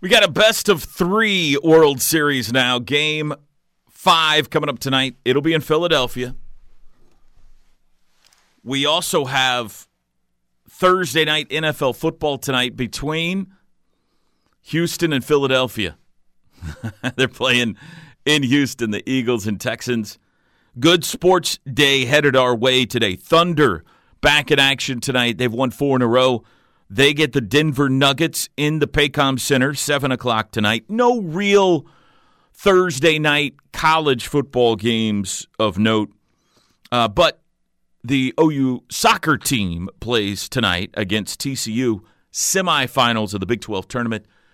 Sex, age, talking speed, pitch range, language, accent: male, 40-59, 125 wpm, 110-150 Hz, English, American